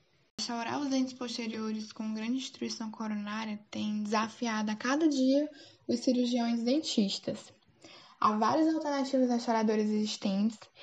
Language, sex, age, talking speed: Portuguese, female, 10-29, 115 wpm